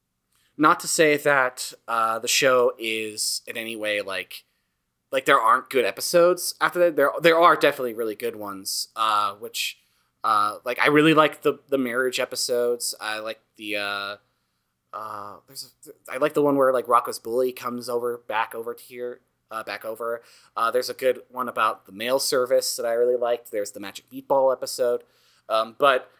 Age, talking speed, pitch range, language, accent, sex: 20-39, 190 wpm, 115-170 Hz, English, American, male